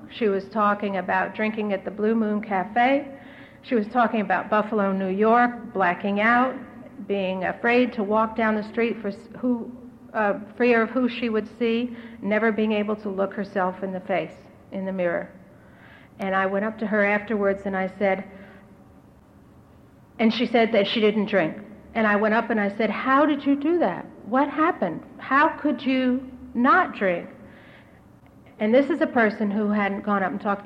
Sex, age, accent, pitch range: female, 60-79, American, 200-250 Hz